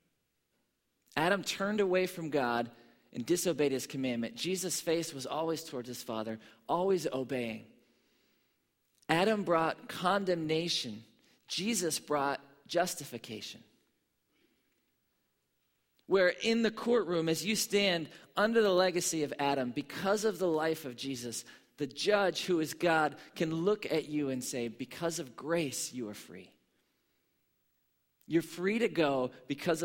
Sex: male